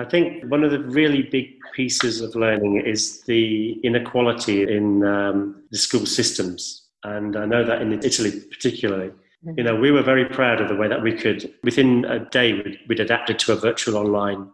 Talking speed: 195 wpm